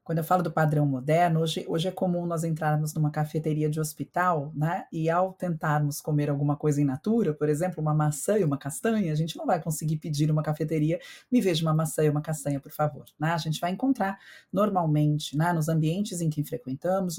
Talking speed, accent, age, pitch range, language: 215 wpm, Brazilian, 40-59, 150-195 Hz, Portuguese